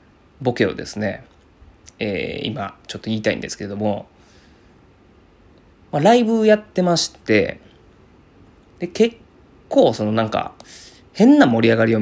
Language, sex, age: Japanese, male, 20-39